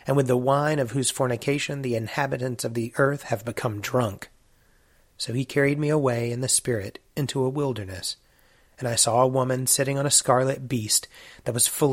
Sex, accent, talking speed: male, American, 195 wpm